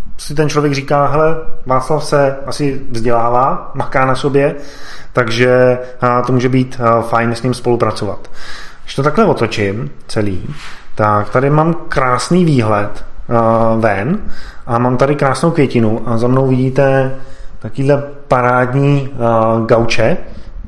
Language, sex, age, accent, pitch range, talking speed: Czech, male, 20-39, native, 120-145 Hz, 125 wpm